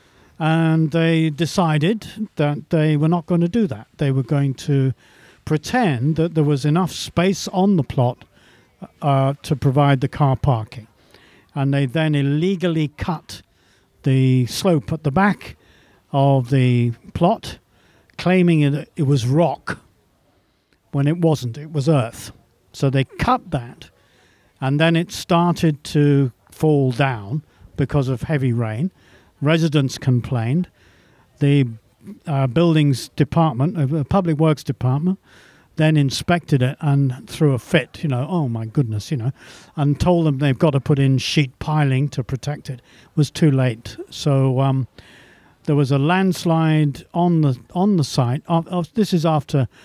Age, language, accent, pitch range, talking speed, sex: 50-69, English, British, 130-160 Hz, 155 wpm, male